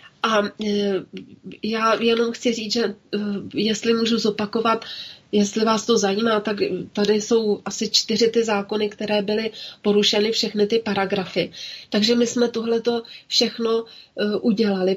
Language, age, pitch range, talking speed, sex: Slovak, 30-49, 195-225 Hz, 130 wpm, female